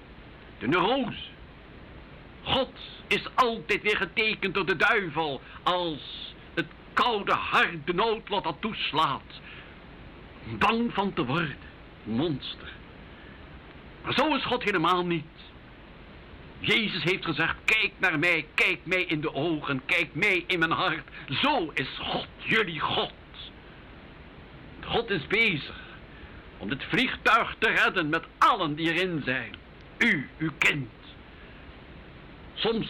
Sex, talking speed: male, 120 wpm